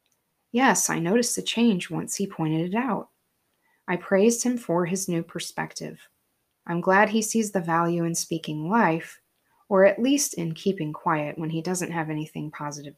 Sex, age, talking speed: female, 20-39, 175 wpm